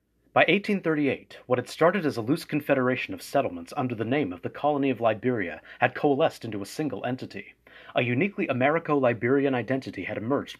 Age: 30-49